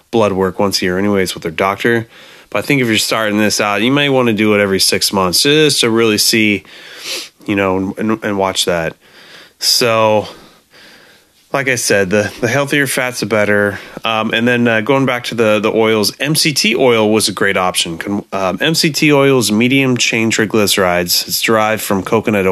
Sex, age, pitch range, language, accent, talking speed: male, 30-49, 100-120 Hz, English, American, 195 wpm